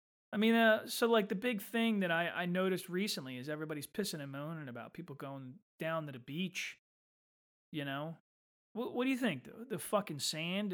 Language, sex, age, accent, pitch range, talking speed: English, male, 30-49, American, 140-215 Hz, 200 wpm